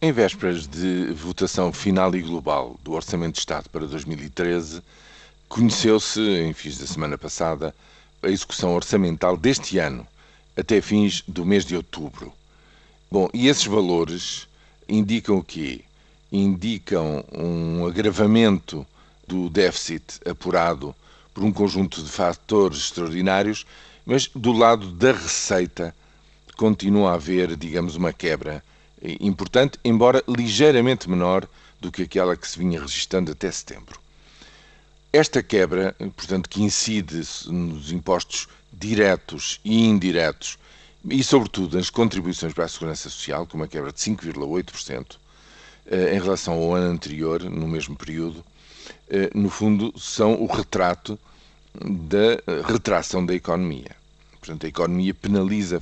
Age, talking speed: 50-69, 125 wpm